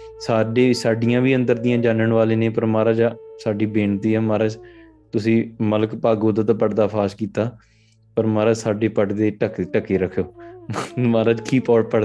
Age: 20-39